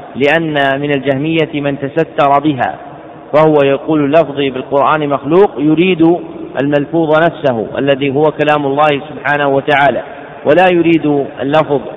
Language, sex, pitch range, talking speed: Arabic, male, 140-160 Hz, 115 wpm